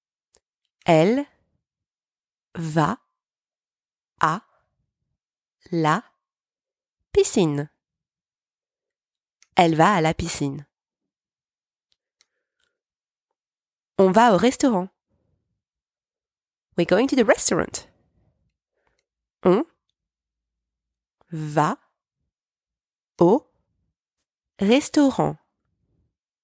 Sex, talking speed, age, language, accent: female, 50 wpm, 30-49, English, French